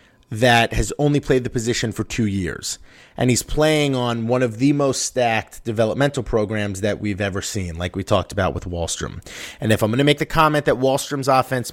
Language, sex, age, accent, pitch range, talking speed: English, male, 30-49, American, 110-135 Hz, 210 wpm